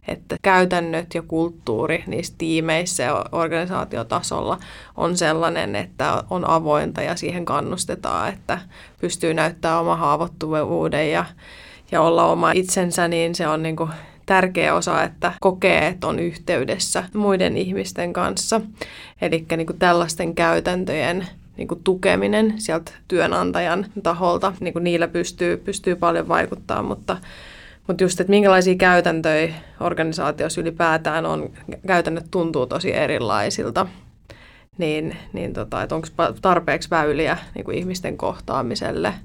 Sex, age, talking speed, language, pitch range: female, 20-39, 120 wpm, Finnish, 160-185 Hz